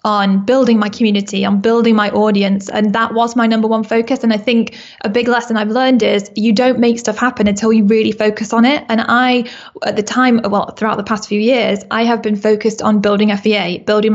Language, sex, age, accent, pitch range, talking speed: English, female, 10-29, British, 210-235 Hz, 230 wpm